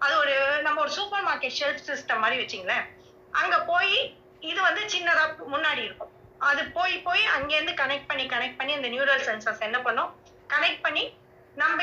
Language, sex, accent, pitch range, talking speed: Tamil, female, native, 265-345 Hz, 170 wpm